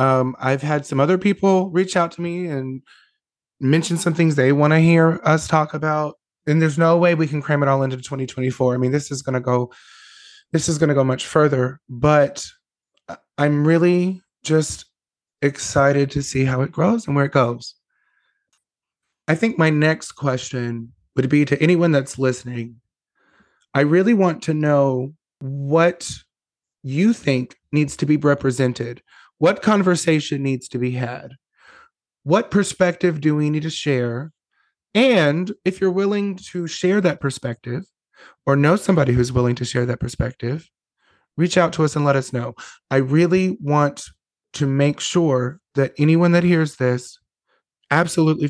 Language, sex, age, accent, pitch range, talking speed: English, male, 30-49, American, 130-175 Hz, 165 wpm